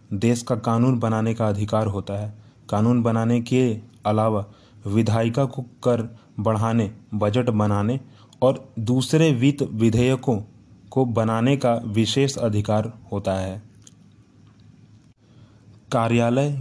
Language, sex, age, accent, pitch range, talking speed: Hindi, male, 30-49, native, 110-130 Hz, 110 wpm